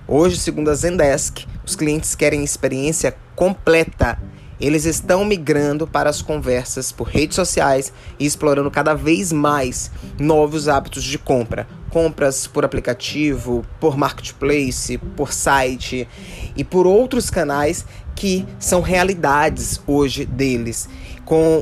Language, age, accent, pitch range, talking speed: Portuguese, 20-39, Brazilian, 140-175 Hz, 120 wpm